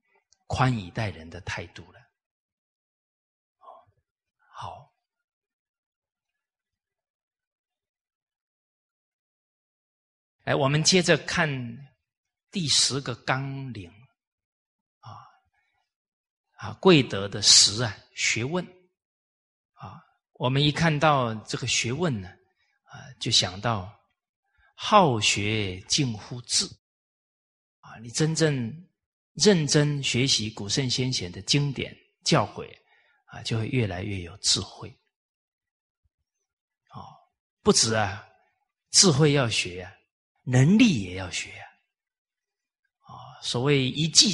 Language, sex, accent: Chinese, male, native